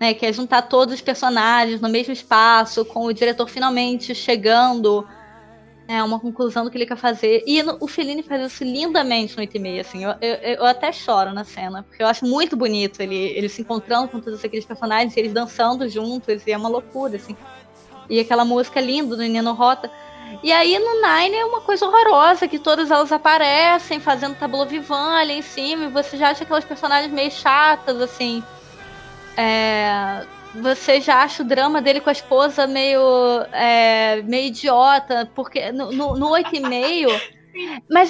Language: Portuguese